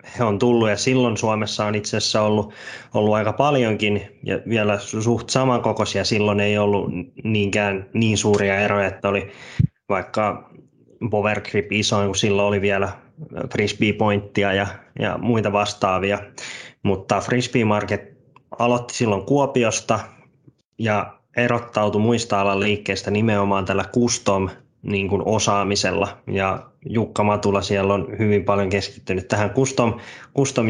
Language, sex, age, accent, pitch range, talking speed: Finnish, male, 20-39, native, 100-115 Hz, 125 wpm